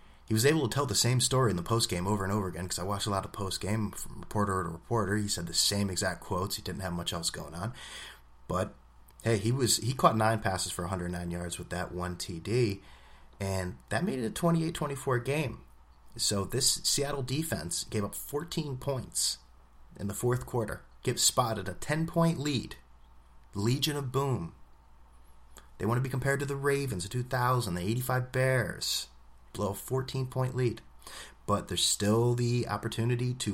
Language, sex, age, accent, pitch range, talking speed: English, male, 30-49, American, 85-120 Hz, 185 wpm